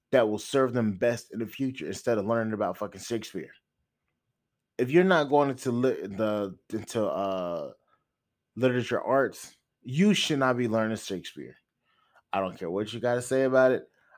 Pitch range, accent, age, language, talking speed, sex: 100-125 Hz, American, 20-39, English, 175 wpm, male